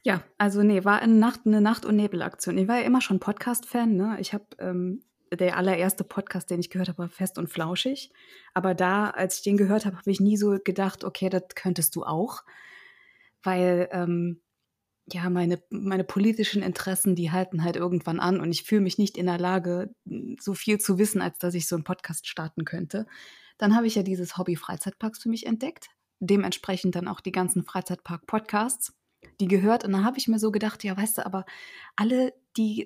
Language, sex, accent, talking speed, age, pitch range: German, female, German, 205 wpm, 20-39, 180-220 Hz